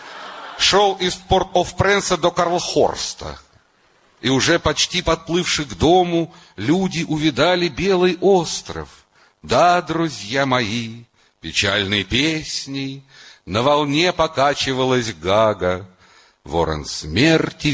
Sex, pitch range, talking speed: male, 110-170 Hz, 90 wpm